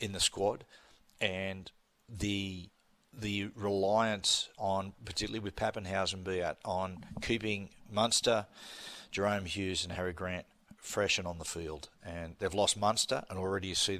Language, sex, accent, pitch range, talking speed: English, male, Australian, 95-110 Hz, 140 wpm